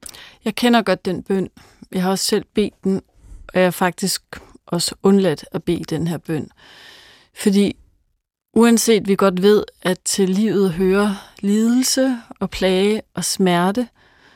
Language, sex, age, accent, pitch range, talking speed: Danish, female, 30-49, native, 185-215 Hz, 150 wpm